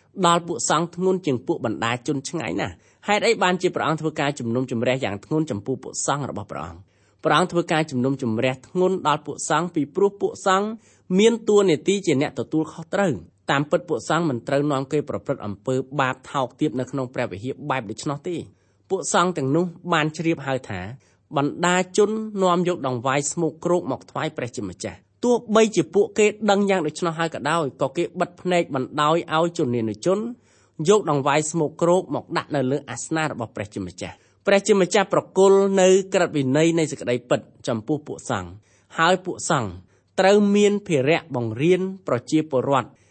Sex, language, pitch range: male, English, 130-175 Hz